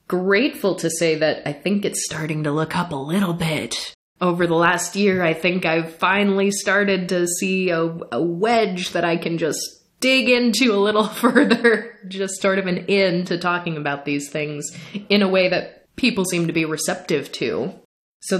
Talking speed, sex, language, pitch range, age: 190 wpm, female, English, 165-200 Hz, 20-39